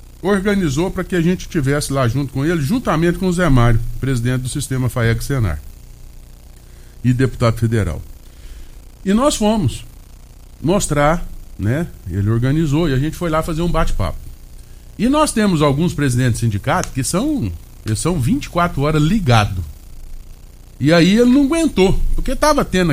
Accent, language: Brazilian, Portuguese